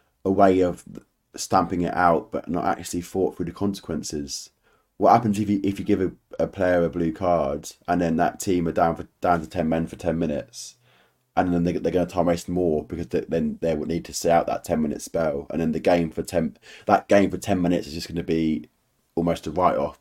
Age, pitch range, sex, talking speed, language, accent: 20-39, 80-95 Hz, male, 245 wpm, English, British